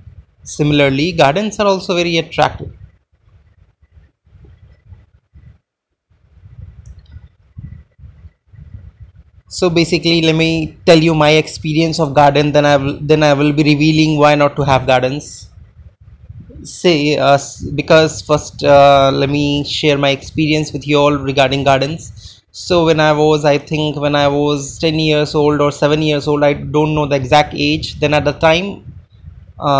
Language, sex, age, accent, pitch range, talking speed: English, male, 20-39, Indian, 100-155 Hz, 140 wpm